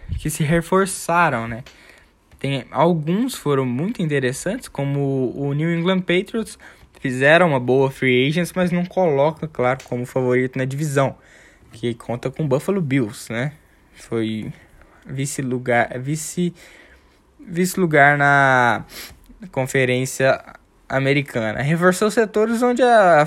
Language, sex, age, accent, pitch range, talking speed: Portuguese, male, 10-29, Brazilian, 130-165 Hz, 120 wpm